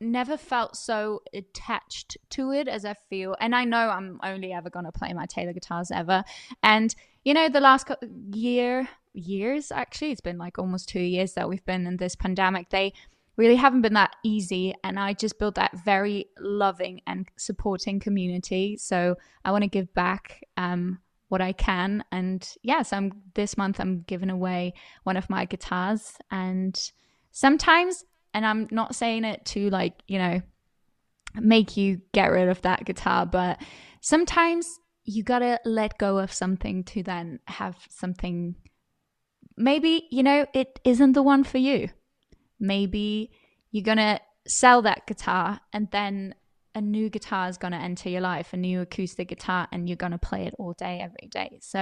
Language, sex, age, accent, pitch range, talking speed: English, female, 10-29, British, 185-230 Hz, 170 wpm